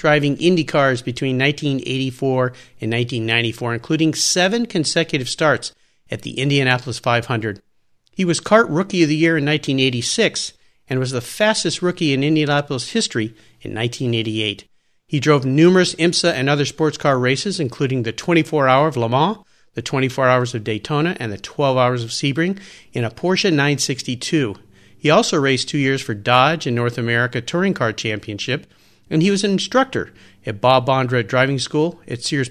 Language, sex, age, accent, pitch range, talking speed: English, male, 50-69, American, 120-160 Hz, 165 wpm